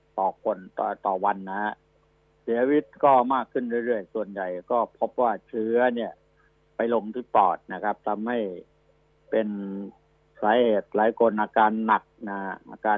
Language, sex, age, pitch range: Thai, male, 60-79, 105-125 Hz